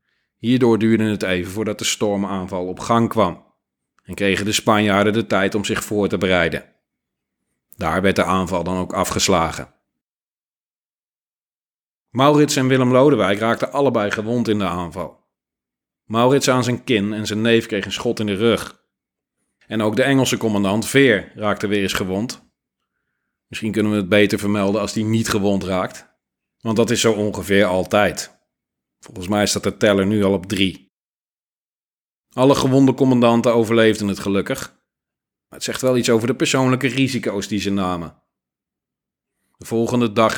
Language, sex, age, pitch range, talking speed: Dutch, male, 40-59, 100-115 Hz, 160 wpm